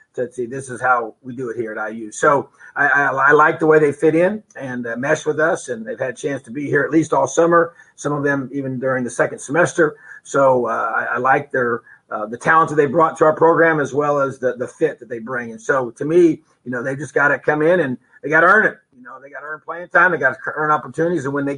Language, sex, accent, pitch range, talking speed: English, male, American, 125-160 Hz, 285 wpm